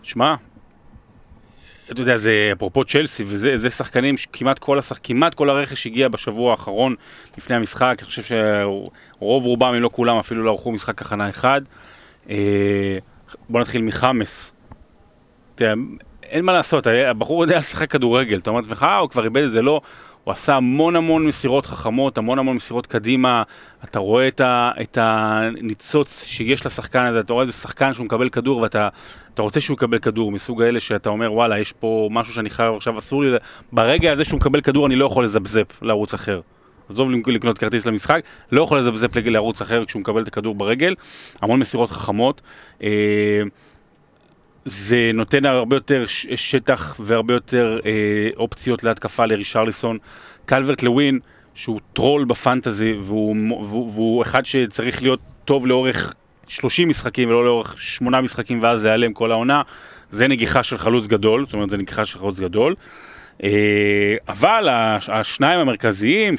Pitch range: 110-130 Hz